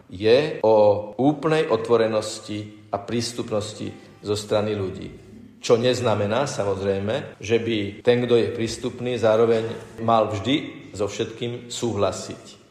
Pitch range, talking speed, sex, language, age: 110-130 Hz, 120 wpm, male, Slovak, 50-69